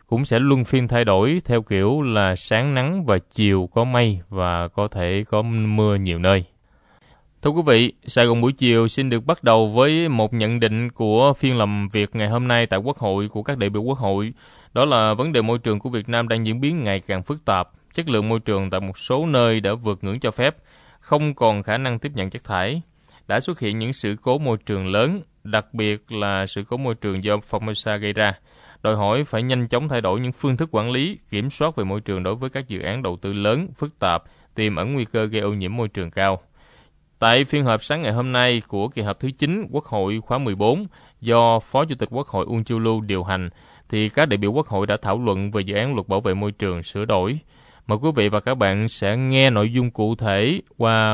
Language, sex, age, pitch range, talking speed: Vietnamese, male, 20-39, 100-125 Hz, 240 wpm